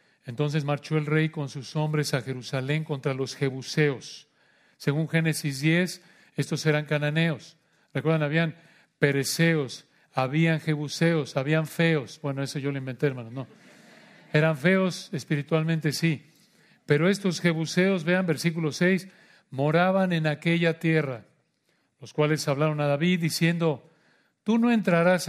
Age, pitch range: 40-59, 150-190 Hz